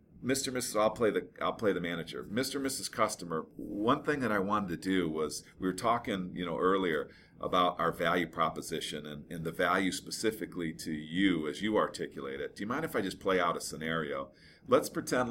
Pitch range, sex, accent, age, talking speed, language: 90-115 Hz, male, American, 40-59, 215 wpm, English